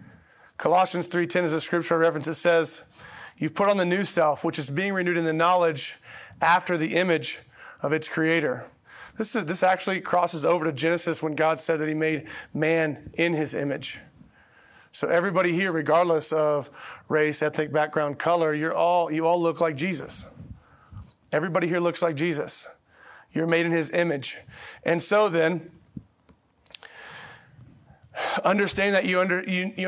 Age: 30-49